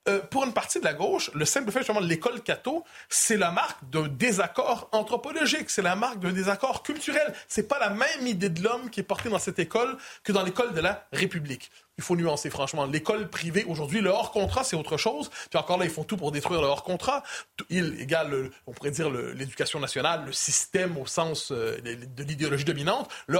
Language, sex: French, male